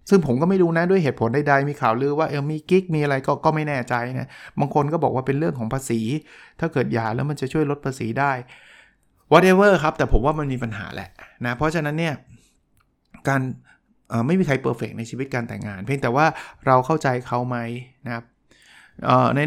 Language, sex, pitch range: Thai, male, 120-150 Hz